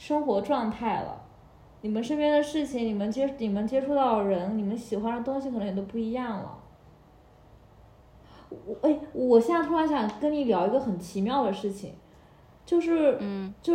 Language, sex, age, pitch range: Chinese, female, 20-39, 210-270 Hz